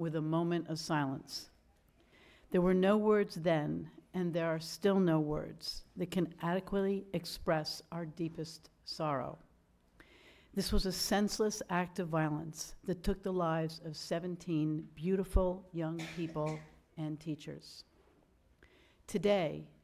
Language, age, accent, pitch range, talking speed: English, 60-79, American, 155-185 Hz, 125 wpm